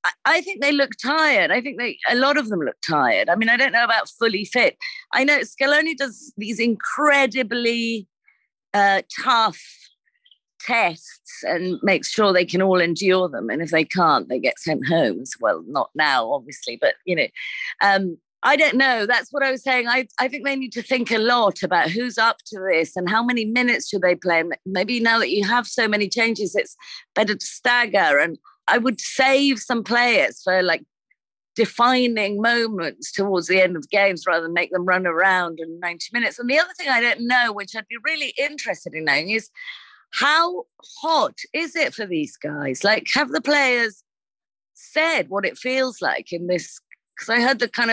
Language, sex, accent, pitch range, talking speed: English, female, British, 190-285 Hz, 200 wpm